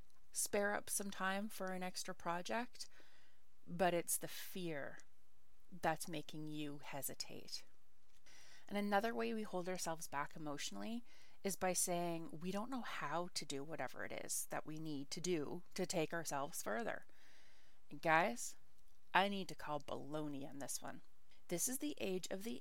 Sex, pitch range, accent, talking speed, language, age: female, 165-215 Hz, American, 160 wpm, English, 30-49